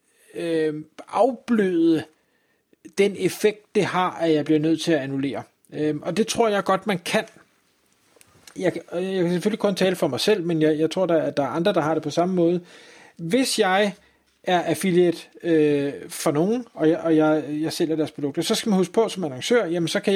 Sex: male